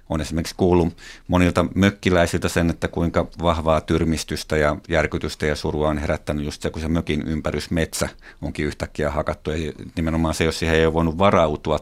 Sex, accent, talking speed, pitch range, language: male, native, 175 wpm, 80-90 Hz, Finnish